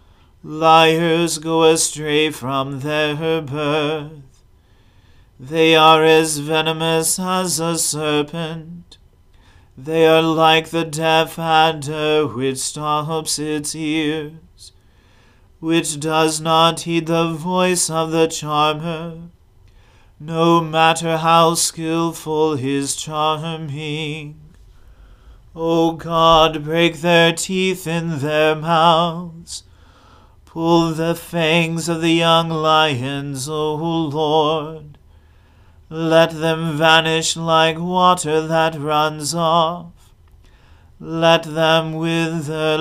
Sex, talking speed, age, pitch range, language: male, 95 wpm, 40-59, 150-165 Hz, English